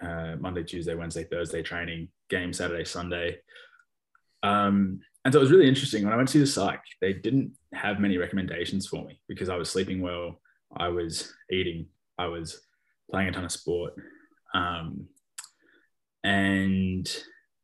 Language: English